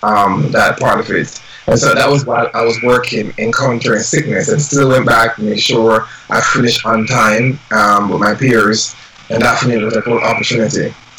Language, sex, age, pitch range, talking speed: English, male, 20-39, 115-140 Hz, 210 wpm